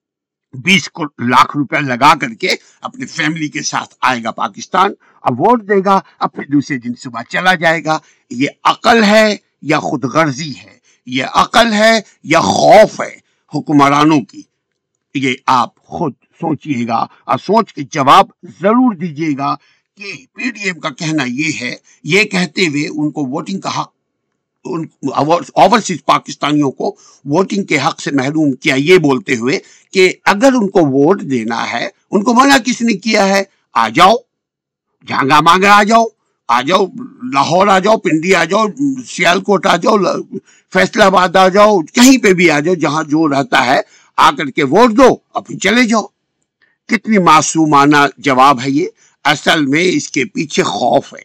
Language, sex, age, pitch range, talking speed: Urdu, male, 60-79, 150-225 Hz, 160 wpm